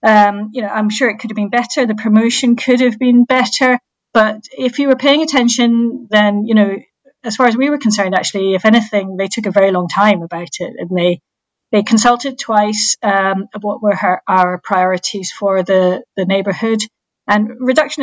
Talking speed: 200 wpm